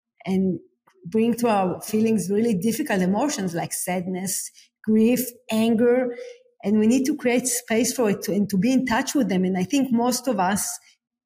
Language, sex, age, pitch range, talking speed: English, female, 40-59, 195-240 Hz, 180 wpm